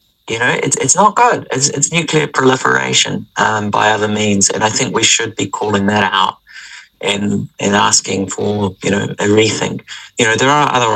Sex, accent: male, British